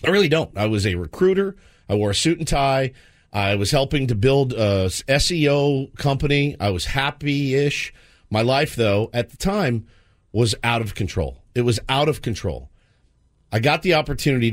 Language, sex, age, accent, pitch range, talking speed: English, male, 40-59, American, 100-135 Hz, 180 wpm